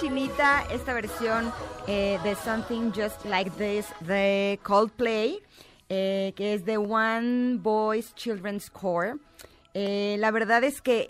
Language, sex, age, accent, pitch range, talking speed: Spanish, female, 30-49, Mexican, 170-210 Hz, 130 wpm